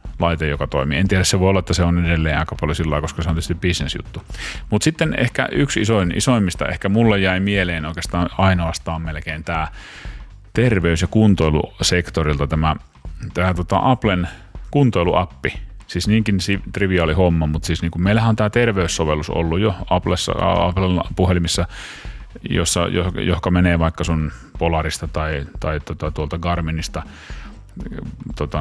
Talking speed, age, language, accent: 145 wpm, 30-49, Finnish, native